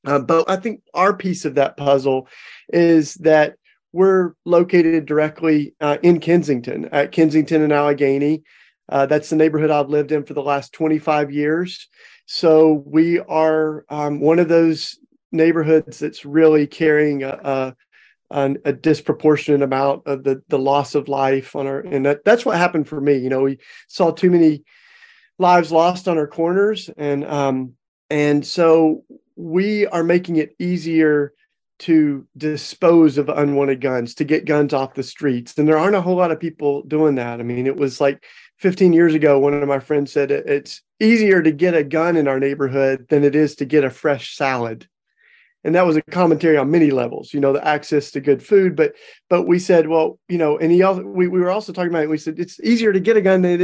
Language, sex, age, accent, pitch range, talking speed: English, male, 40-59, American, 145-175 Hz, 195 wpm